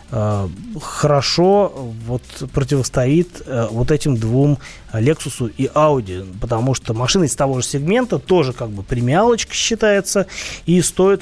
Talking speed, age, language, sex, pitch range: 125 wpm, 30-49, Russian, male, 120-160 Hz